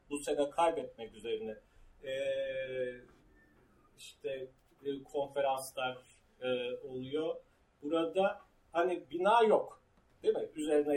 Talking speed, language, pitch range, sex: 95 wpm, Turkish, 140-215 Hz, male